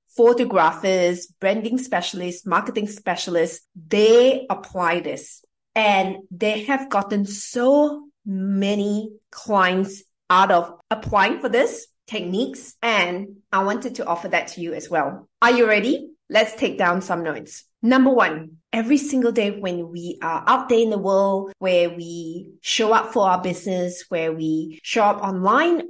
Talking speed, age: 150 wpm, 30-49